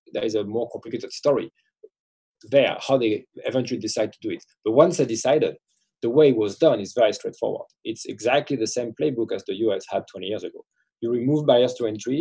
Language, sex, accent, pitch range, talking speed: English, male, French, 110-145 Hz, 210 wpm